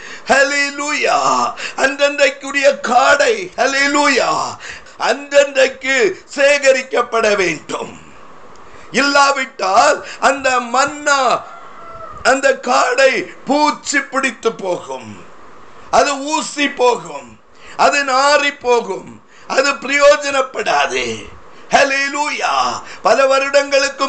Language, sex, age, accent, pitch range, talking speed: Tamil, male, 50-69, native, 265-290 Hz, 30 wpm